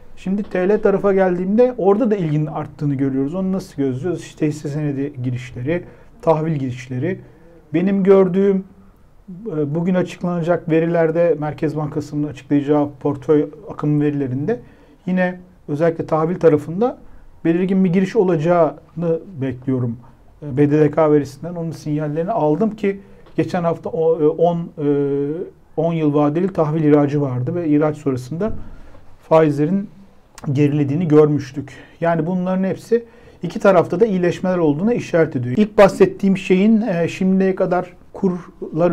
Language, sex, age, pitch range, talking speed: Turkish, male, 50-69, 145-180 Hz, 115 wpm